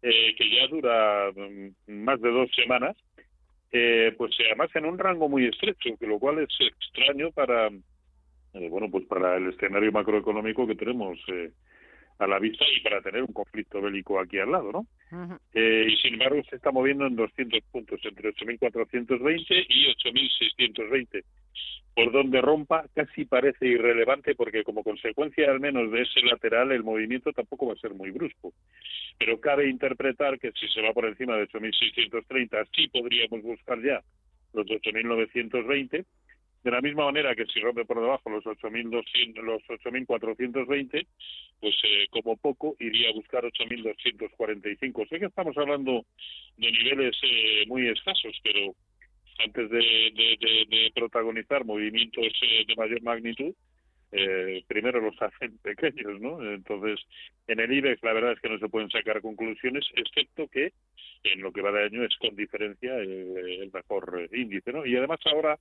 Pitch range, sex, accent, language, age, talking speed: 105-140 Hz, male, Spanish, Spanish, 40-59, 165 wpm